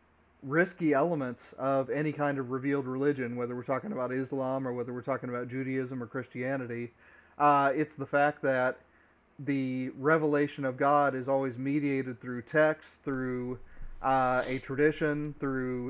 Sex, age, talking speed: male, 30-49, 150 wpm